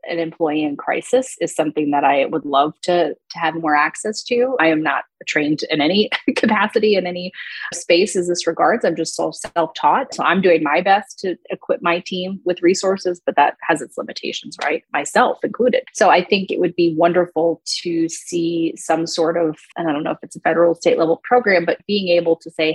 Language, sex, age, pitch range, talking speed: English, female, 30-49, 160-200 Hz, 210 wpm